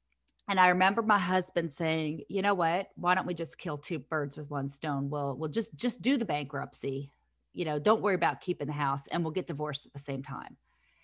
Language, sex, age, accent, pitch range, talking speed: English, female, 40-59, American, 155-190 Hz, 230 wpm